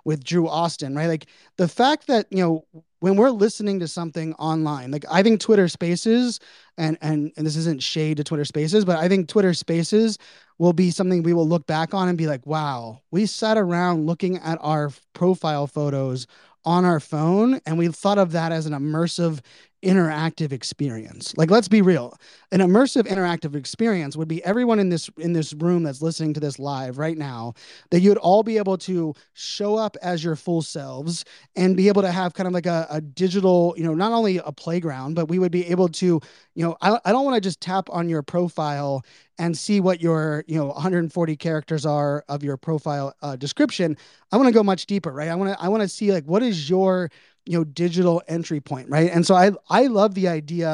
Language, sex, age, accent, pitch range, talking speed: English, male, 20-39, American, 150-185 Hz, 215 wpm